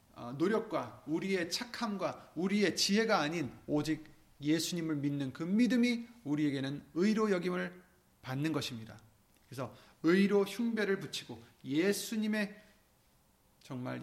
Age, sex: 30-49, male